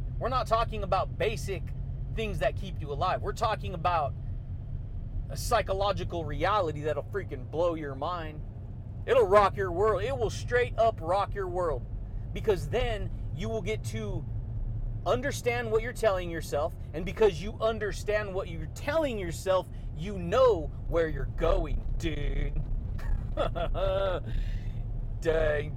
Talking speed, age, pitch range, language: 135 wpm, 30-49, 110-185 Hz, English